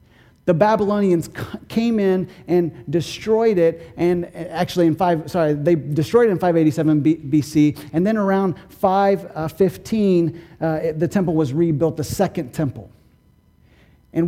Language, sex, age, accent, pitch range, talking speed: English, male, 40-59, American, 155-195 Hz, 130 wpm